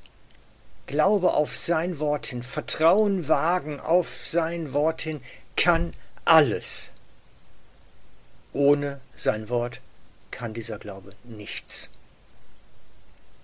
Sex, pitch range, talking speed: male, 125-160 Hz, 90 wpm